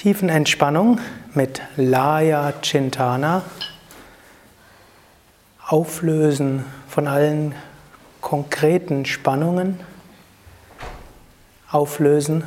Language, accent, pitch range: German, German, 135-165 Hz